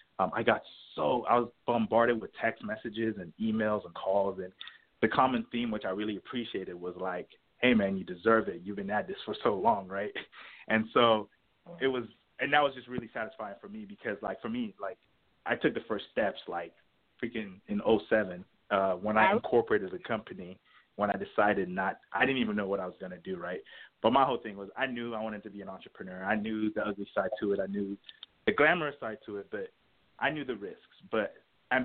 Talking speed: 220 wpm